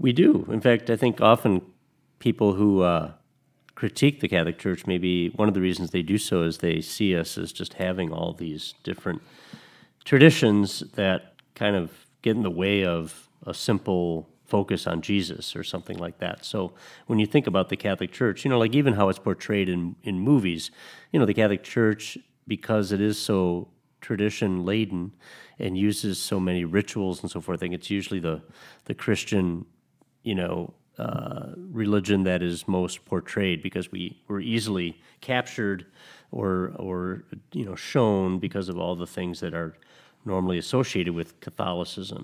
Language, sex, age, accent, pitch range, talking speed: English, male, 40-59, American, 90-105 Hz, 175 wpm